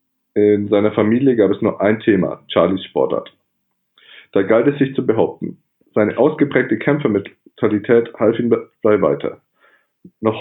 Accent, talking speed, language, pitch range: German, 140 wpm, German, 105-130 Hz